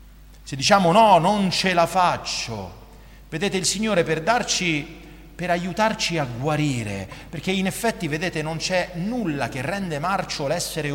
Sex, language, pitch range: male, Italian, 140-200 Hz